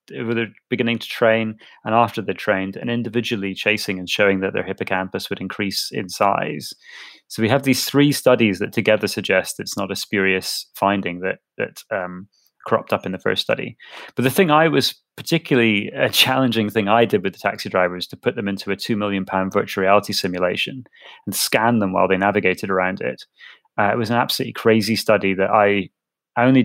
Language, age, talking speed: English, 30-49, 200 wpm